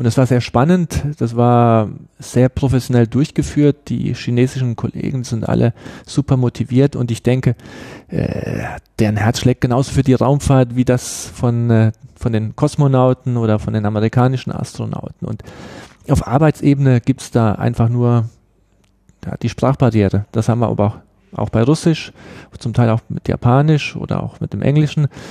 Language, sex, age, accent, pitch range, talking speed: German, male, 40-59, German, 115-140 Hz, 165 wpm